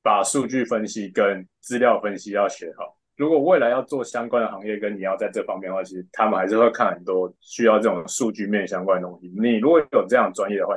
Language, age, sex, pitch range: Chinese, 20-39, male, 95-145 Hz